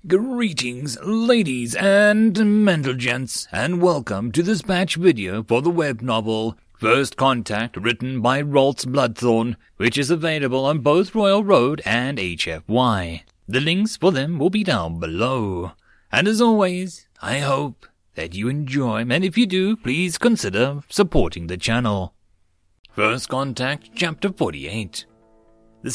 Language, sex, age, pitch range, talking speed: English, male, 30-49, 110-170 Hz, 140 wpm